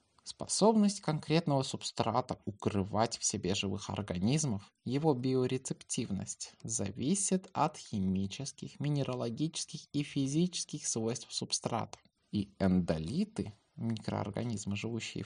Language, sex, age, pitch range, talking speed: Russian, male, 20-39, 105-150 Hz, 85 wpm